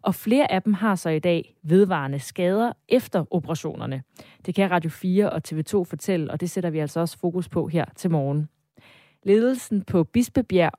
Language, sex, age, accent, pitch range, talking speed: Danish, female, 30-49, native, 160-205 Hz, 185 wpm